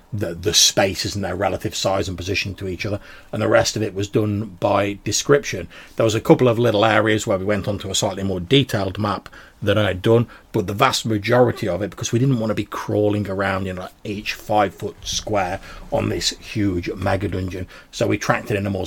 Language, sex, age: English, male, 40-59